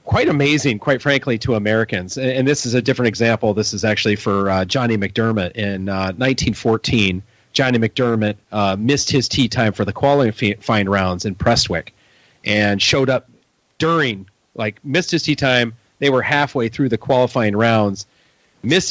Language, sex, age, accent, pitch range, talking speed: English, male, 40-59, American, 110-135 Hz, 165 wpm